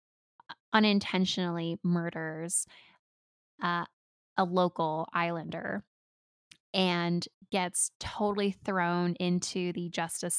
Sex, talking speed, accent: female, 75 wpm, American